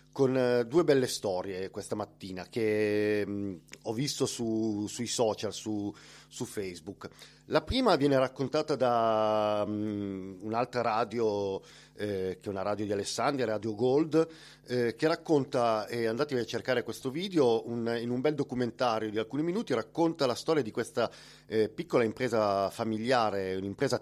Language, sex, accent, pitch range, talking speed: Italian, male, native, 105-125 Hz, 140 wpm